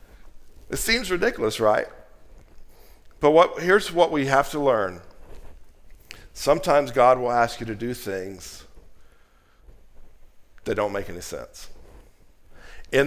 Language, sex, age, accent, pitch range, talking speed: English, male, 50-69, American, 110-155 Hz, 115 wpm